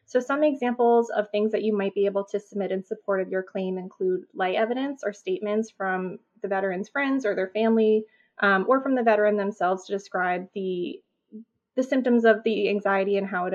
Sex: female